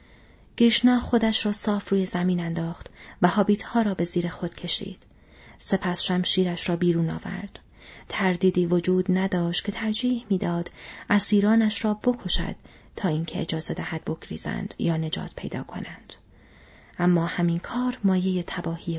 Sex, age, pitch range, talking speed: female, 30-49, 175-200 Hz, 135 wpm